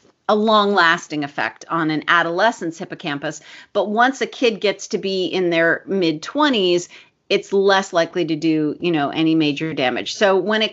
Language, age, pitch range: English, 40-59, 165-215 Hz